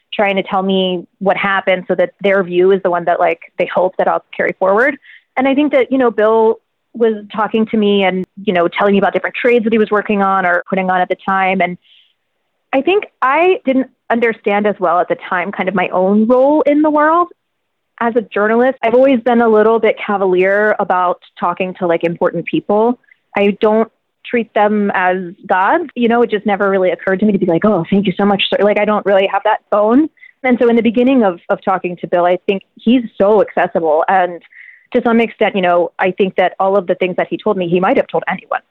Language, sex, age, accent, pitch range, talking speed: English, female, 20-39, American, 185-225 Hz, 240 wpm